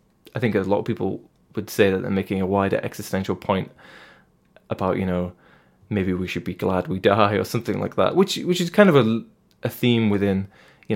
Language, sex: English, male